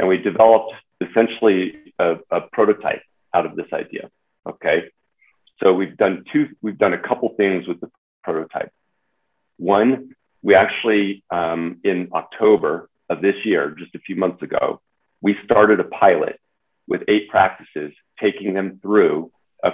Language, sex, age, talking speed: English, male, 40-59, 150 wpm